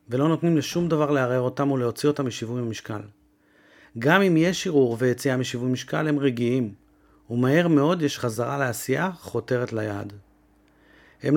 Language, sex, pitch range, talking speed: Hebrew, male, 120-150 Hz, 145 wpm